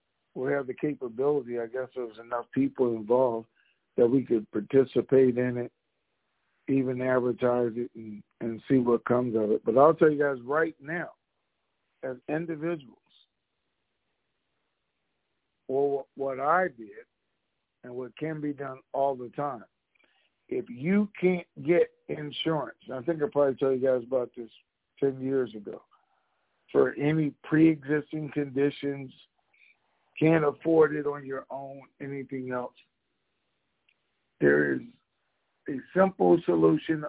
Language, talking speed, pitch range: English, 135 wpm, 130-175 Hz